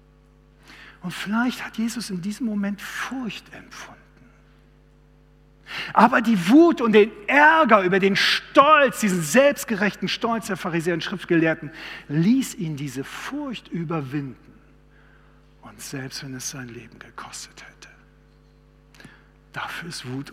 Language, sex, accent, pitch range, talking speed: German, male, German, 145-210 Hz, 120 wpm